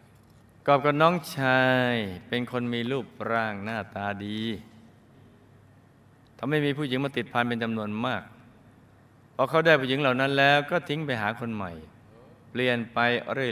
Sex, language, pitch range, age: male, Thai, 110-130 Hz, 20-39